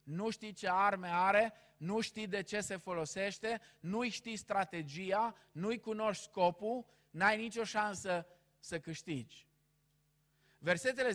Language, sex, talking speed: Romanian, male, 125 wpm